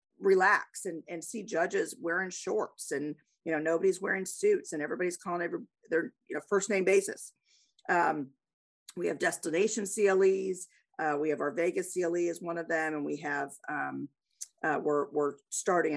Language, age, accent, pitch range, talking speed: English, 50-69, American, 160-205 Hz, 175 wpm